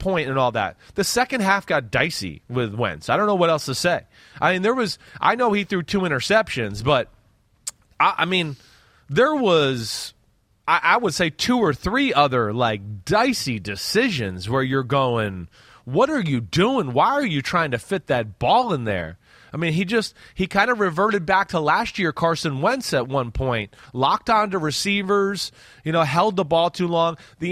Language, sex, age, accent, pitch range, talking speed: English, male, 30-49, American, 140-200 Hz, 200 wpm